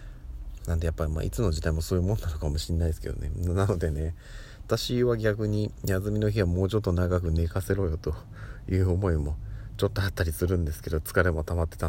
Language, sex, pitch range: Japanese, male, 80-105 Hz